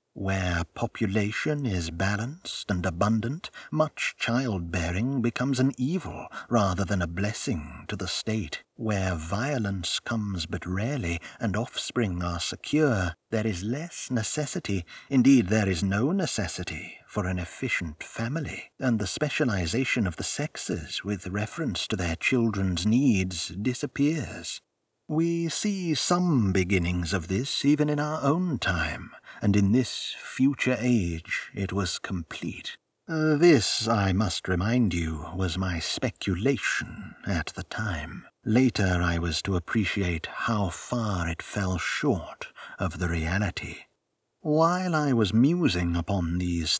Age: 60-79